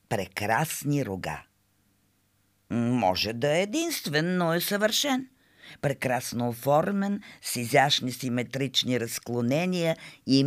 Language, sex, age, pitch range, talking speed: Bulgarian, female, 50-69, 105-170 Hz, 90 wpm